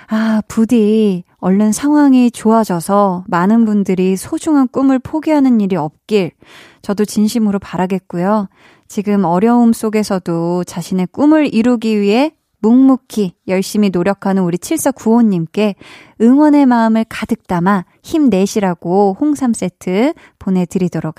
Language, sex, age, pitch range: Korean, female, 20-39, 185-250 Hz